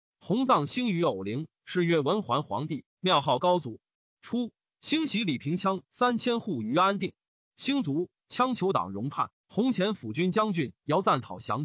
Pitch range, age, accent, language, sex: 150-215 Hz, 30-49, native, Chinese, male